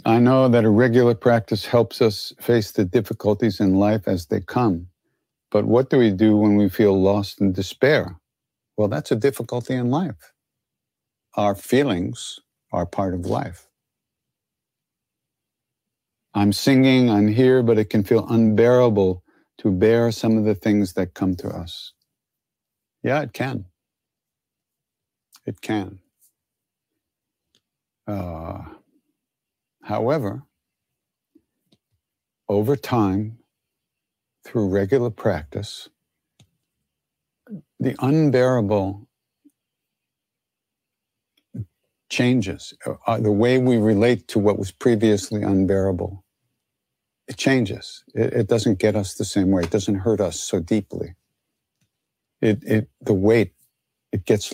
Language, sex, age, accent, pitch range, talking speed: English, male, 50-69, American, 100-120 Hz, 115 wpm